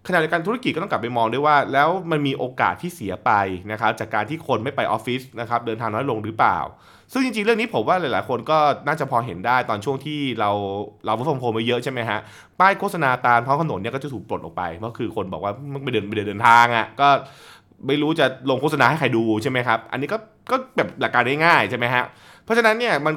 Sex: male